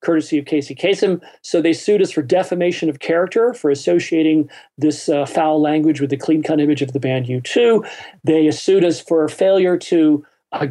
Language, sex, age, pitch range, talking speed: English, male, 40-59, 135-175 Hz, 185 wpm